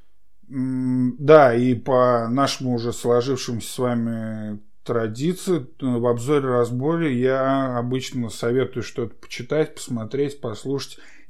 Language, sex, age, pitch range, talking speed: Russian, male, 20-39, 120-140 Hz, 95 wpm